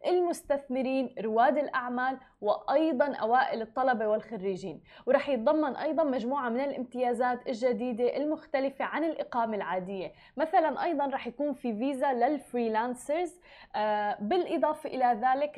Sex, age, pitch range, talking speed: female, 20-39, 230-280 Hz, 110 wpm